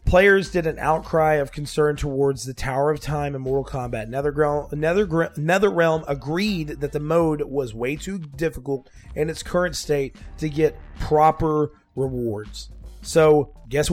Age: 30-49